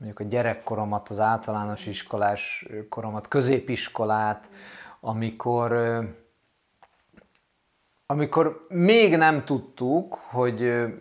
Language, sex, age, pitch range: Hungarian, male, 30-49, 115-140 Hz